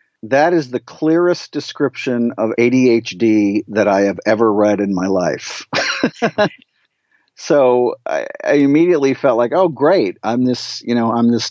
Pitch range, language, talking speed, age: 105-145 Hz, English, 150 wpm, 50-69